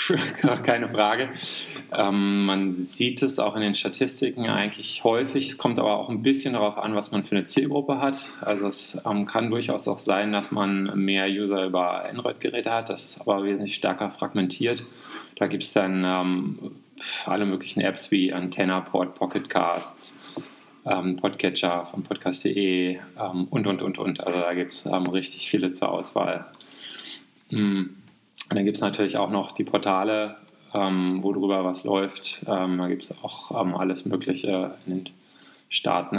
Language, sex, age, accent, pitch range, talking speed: German, male, 20-39, German, 90-100 Hz, 170 wpm